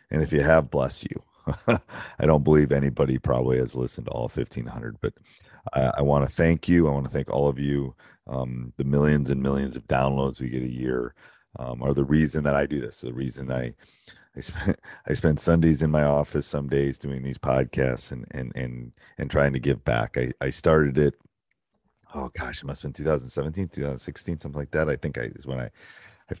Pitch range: 65-75 Hz